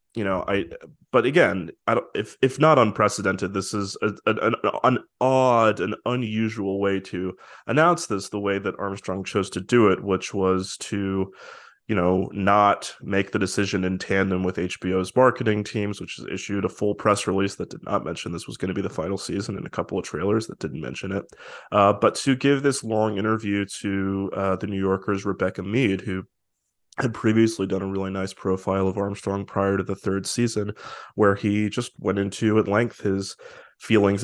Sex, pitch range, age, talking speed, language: male, 95-110 Hz, 20-39, 200 wpm, English